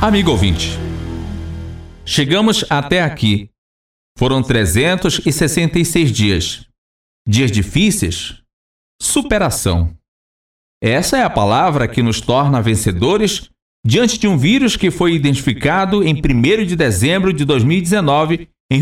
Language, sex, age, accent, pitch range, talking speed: Portuguese, male, 40-59, Brazilian, 105-175 Hz, 105 wpm